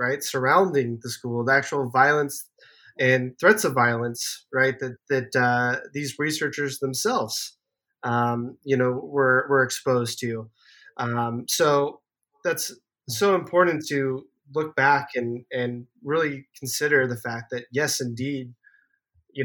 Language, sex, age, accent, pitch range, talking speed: English, male, 20-39, American, 125-150 Hz, 135 wpm